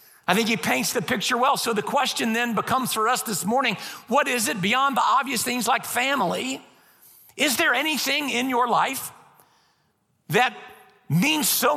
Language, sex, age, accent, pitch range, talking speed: English, male, 50-69, American, 190-250 Hz, 175 wpm